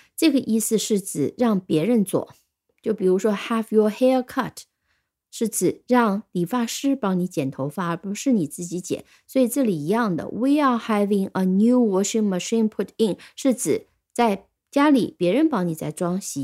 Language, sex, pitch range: Chinese, female, 190-260 Hz